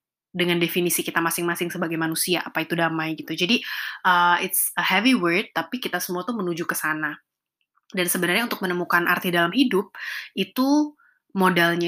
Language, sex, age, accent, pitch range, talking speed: Indonesian, female, 20-39, native, 170-215 Hz, 160 wpm